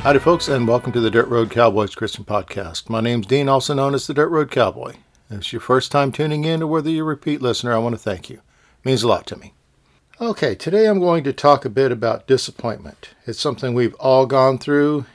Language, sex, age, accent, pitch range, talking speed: English, male, 50-69, American, 115-145 Hz, 245 wpm